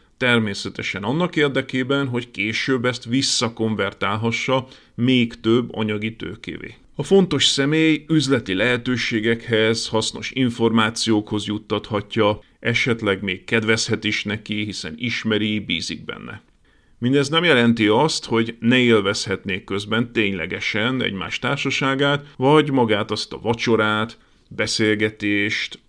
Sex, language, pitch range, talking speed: male, Hungarian, 105-130 Hz, 105 wpm